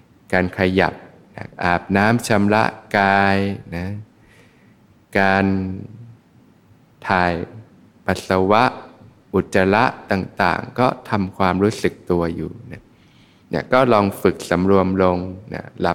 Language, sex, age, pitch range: Thai, male, 20-39, 90-105 Hz